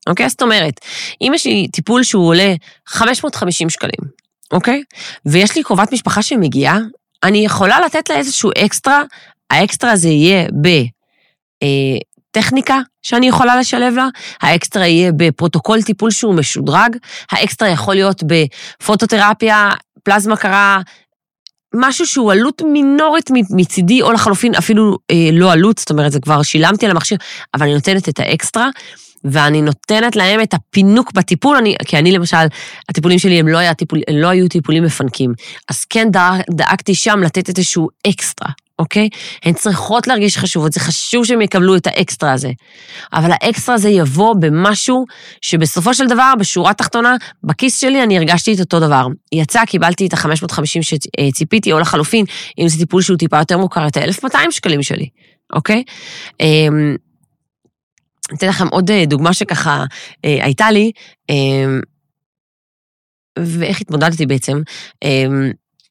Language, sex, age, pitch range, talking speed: Hebrew, female, 30-49, 160-220 Hz, 145 wpm